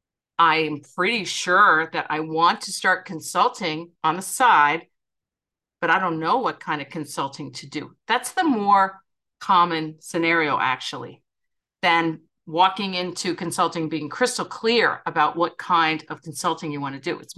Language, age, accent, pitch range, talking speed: English, 50-69, American, 165-220 Hz, 155 wpm